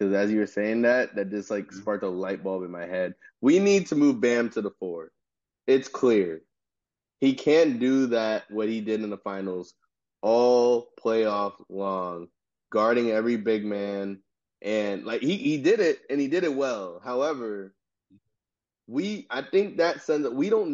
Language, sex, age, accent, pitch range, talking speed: English, male, 20-39, American, 110-175 Hz, 180 wpm